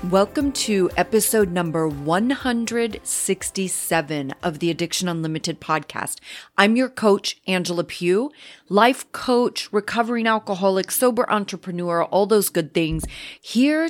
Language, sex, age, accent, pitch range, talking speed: English, female, 30-49, American, 165-230 Hz, 110 wpm